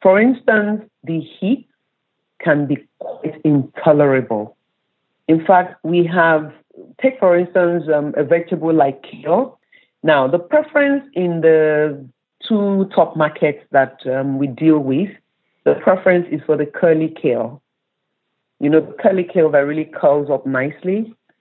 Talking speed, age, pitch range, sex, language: 140 wpm, 50-69, 150-195 Hz, female, English